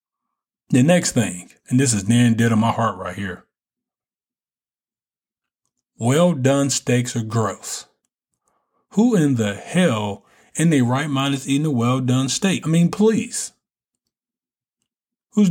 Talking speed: 135 wpm